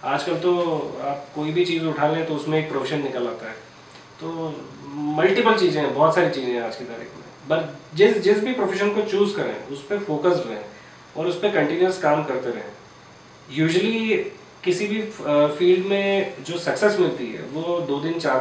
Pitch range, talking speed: 130-170 Hz, 190 wpm